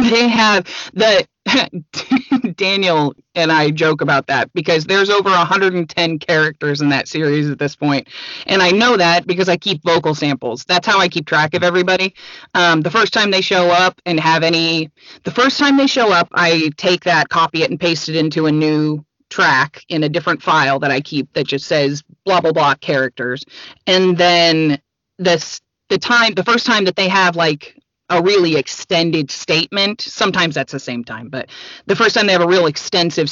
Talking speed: 195 wpm